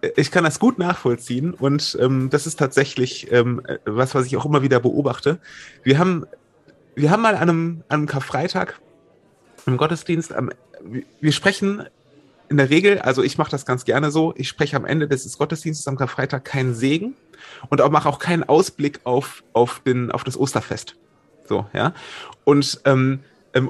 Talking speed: 170 wpm